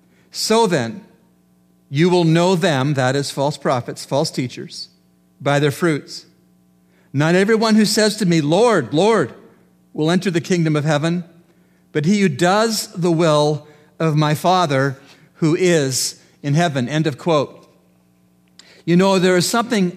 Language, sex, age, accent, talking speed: English, male, 50-69, American, 150 wpm